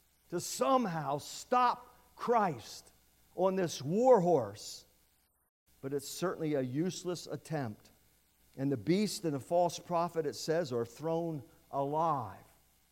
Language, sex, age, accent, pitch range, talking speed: English, male, 50-69, American, 105-165 Hz, 120 wpm